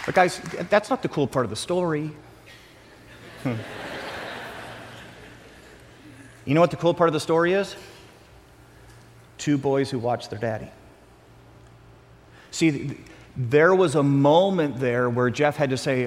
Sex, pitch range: male, 125-150 Hz